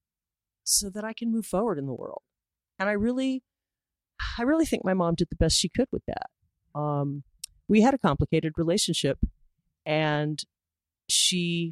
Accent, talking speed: American, 165 wpm